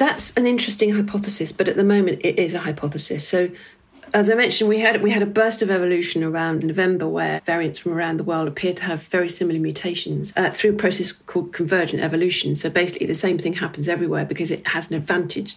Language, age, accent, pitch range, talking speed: English, 40-59, British, 170-205 Hz, 220 wpm